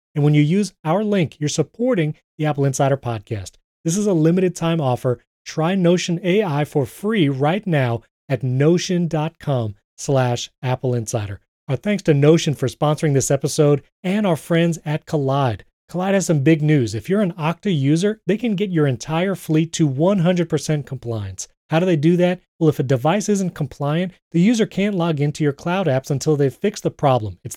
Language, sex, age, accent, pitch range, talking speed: English, male, 30-49, American, 140-175 Hz, 190 wpm